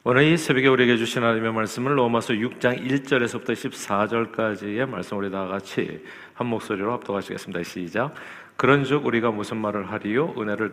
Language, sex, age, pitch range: Korean, male, 40-59, 105-135 Hz